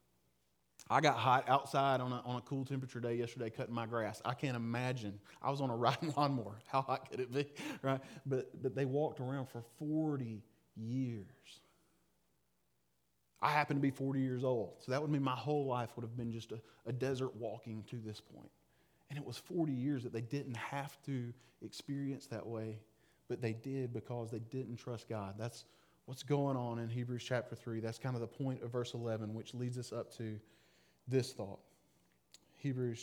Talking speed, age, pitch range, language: 195 wpm, 30-49, 115-150 Hz, English